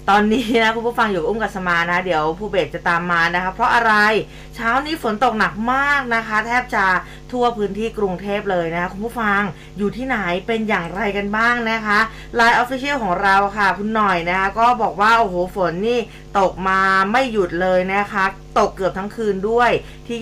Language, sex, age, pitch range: Thai, female, 20-39, 185-235 Hz